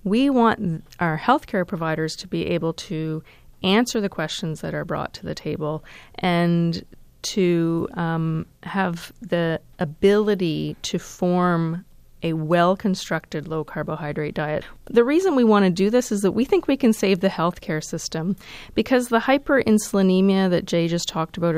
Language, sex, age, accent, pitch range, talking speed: English, female, 30-49, American, 170-225 Hz, 155 wpm